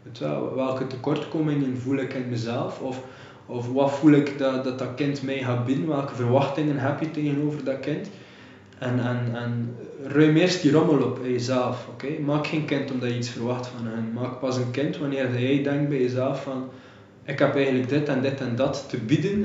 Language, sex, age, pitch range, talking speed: Dutch, male, 20-39, 130-150 Hz, 200 wpm